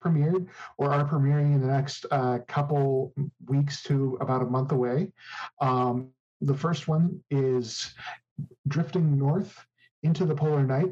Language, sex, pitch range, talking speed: English, male, 125-150 Hz, 145 wpm